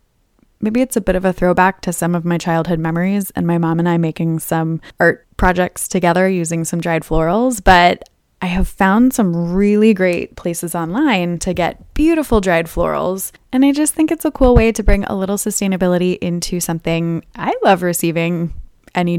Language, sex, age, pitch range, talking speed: English, female, 20-39, 165-190 Hz, 190 wpm